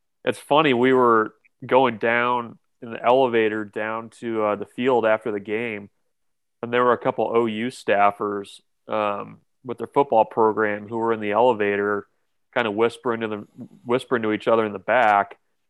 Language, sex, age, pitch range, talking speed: English, male, 30-49, 110-120 Hz, 175 wpm